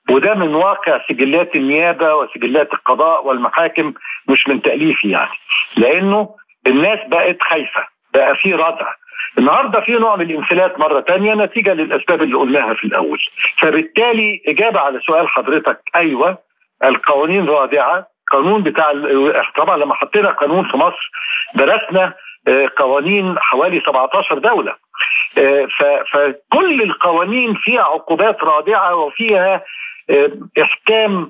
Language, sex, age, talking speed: Arabic, male, 50-69, 115 wpm